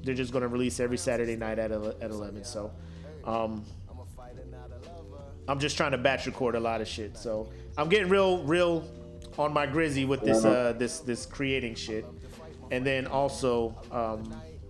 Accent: American